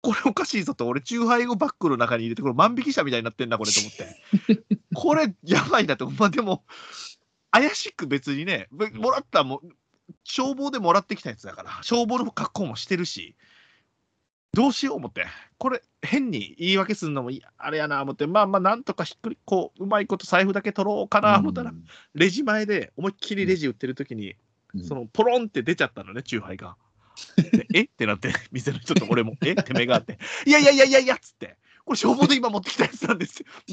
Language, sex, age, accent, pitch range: Japanese, male, 30-49, native, 155-235 Hz